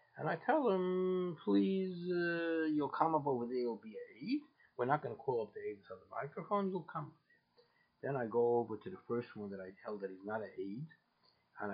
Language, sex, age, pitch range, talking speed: English, male, 50-69, 110-180 Hz, 235 wpm